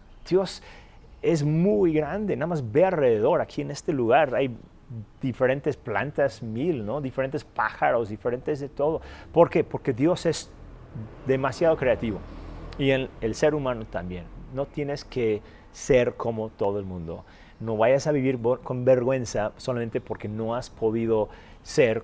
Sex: male